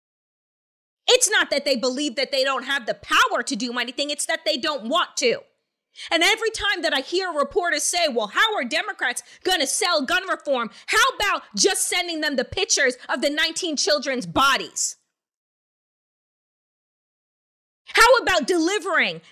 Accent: American